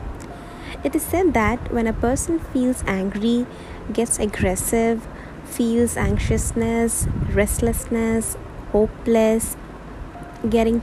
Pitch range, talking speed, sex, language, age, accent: 220-270 Hz, 90 wpm, female, English, 20-39, Indian